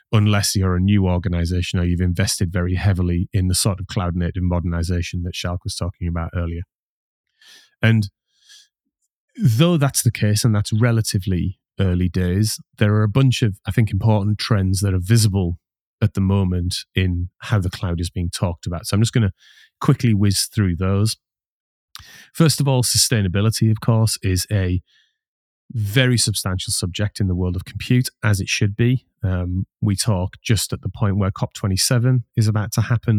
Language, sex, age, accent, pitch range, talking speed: English, male, 30-49, British, 95-115 Hz, 175 wpm